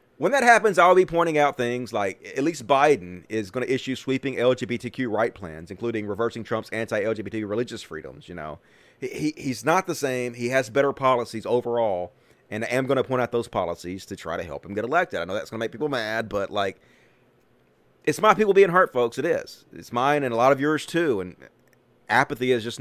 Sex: male